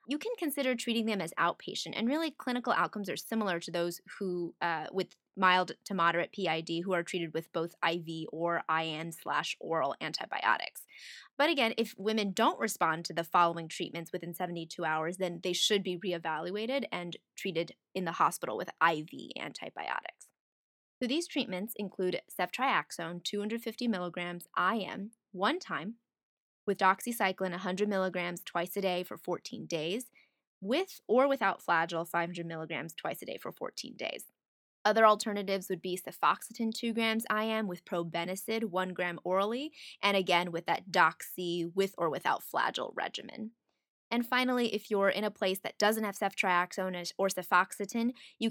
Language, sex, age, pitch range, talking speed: English, female, 20-39, 175-225 Hz, 160 wpm